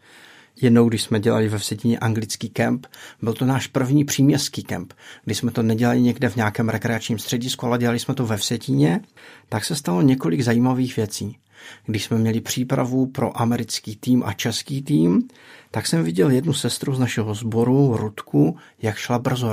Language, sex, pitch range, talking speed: Czech, male, 110-130 Hz, 175 wpm